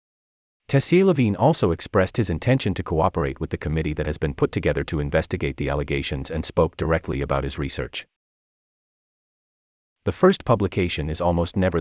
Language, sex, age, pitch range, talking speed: English, male, 30-49, 75-120 Hz, 160 wpm